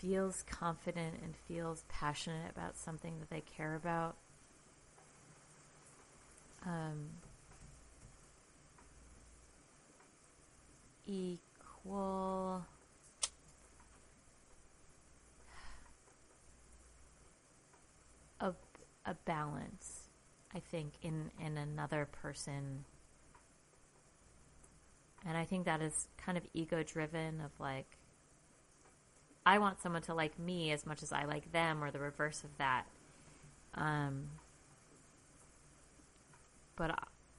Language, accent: English, American